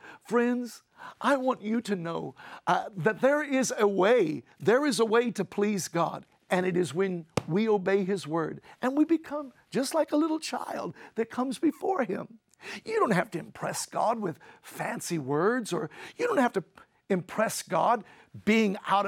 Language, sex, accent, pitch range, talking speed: English, male, American, 190-285 Hz, 180 wpm